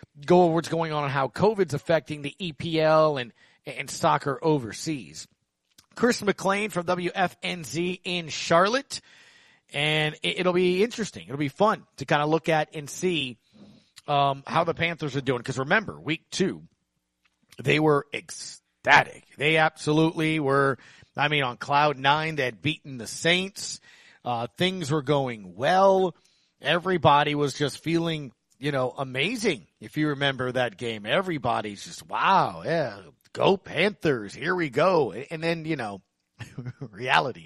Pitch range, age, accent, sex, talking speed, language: 140-170 Hz, 40-59, American, male, 150 wpm, English